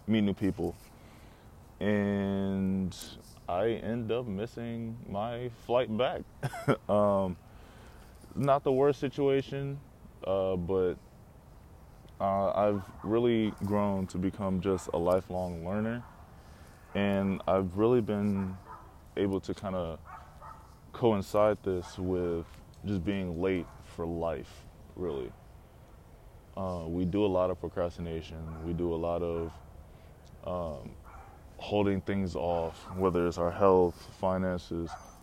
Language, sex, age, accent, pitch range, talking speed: English, male, 20-39, American, 90-105 Hz, 110 wpm